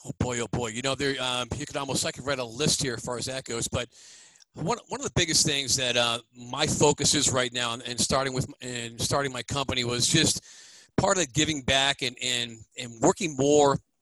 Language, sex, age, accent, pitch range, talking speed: English, male, 40-59, American, 125-150 Hz, 225 wpm